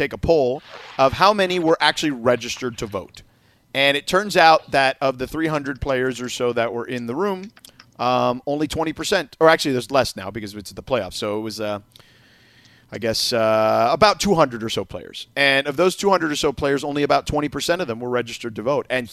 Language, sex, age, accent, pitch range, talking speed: English, male, 30-49, American, 120-160 Hz, 220 wpm